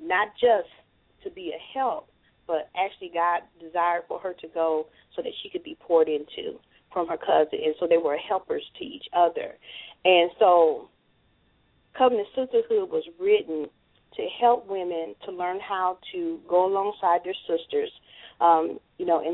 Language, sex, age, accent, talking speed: English, female, 40-59, American, 165 wpm